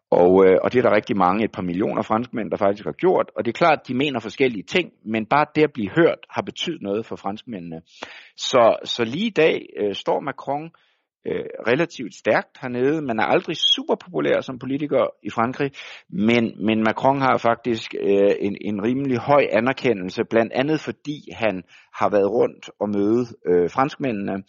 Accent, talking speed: native, 180 wpm